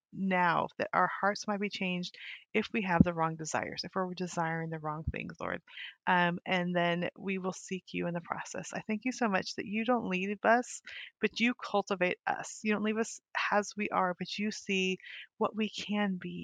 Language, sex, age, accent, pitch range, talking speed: English, female, 30-49, American, 180-220 Hz, 210 wpm